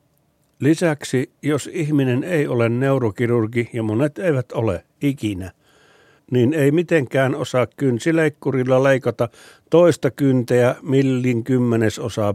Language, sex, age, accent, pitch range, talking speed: Finnish, male, 50-69, native, 110-140 Hz, 105 wpm